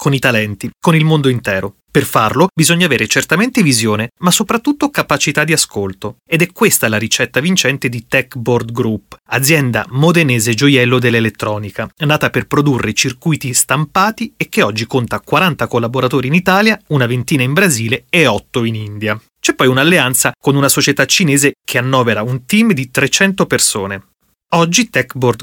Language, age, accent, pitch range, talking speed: Italian, 30-49, native, 120-165 Hz, 160 wpm